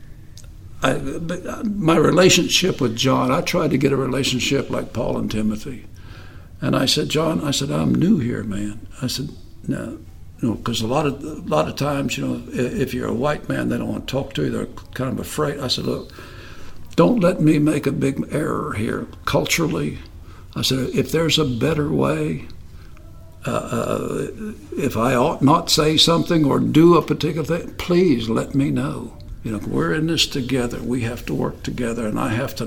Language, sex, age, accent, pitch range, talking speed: English, male, 60-79, American, 95-150 Hz, 185 wpm